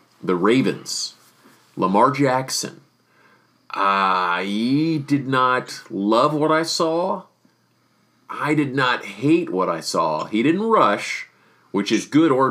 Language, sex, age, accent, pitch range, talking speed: English, male, 30-49, American, 100-120 Hz, 125 wpm